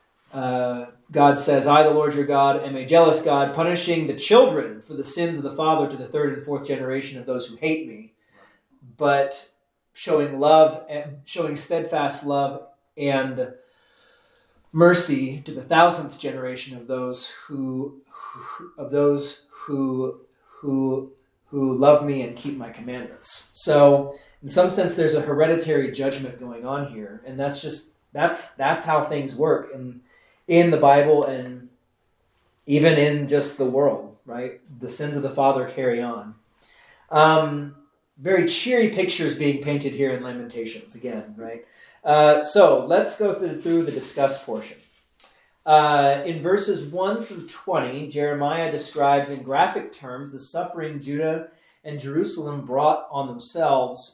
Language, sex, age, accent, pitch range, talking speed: English, male, 30-49, American, 135-155 Hz, 150 wpm